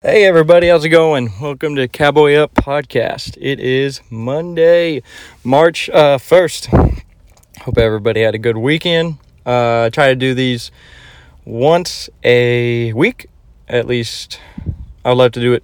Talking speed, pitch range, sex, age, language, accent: 140 wpm, 115-145 Hz, male, 20-39, English, American